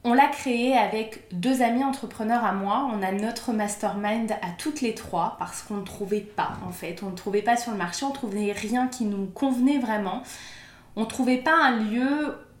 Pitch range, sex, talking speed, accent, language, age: 205-255 Hz, female, 215 wpm, French, English, 20-39